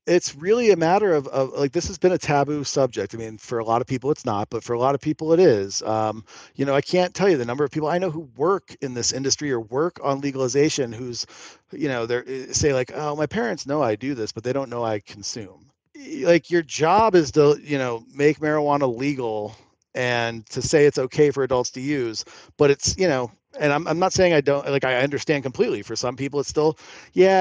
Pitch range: 125-180 Hz